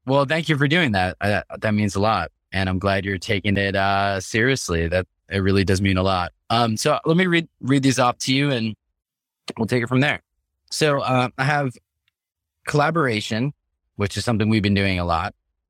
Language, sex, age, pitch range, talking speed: English, male, 20-39, 95-130 Hz, 210 wpm